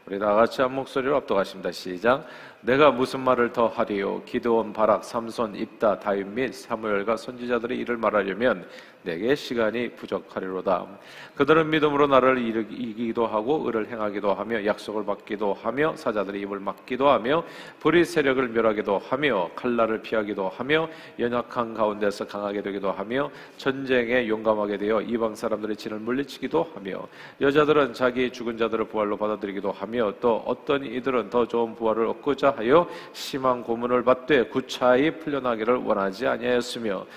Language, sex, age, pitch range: Korean, male, 40-59, 110-130 Hz